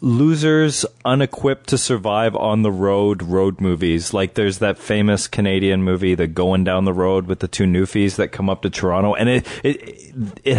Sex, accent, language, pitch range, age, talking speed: male, American, English, 95-115 Hz, 30-49, 185 wpm